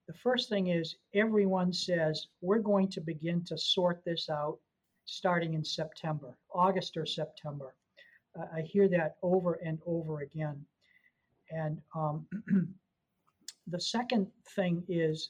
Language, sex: English, male